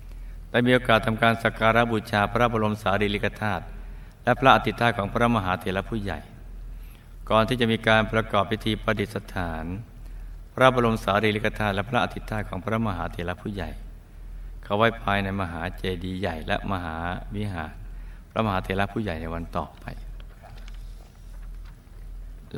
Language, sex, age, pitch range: Thai, male, 60-79, 90-110 Hz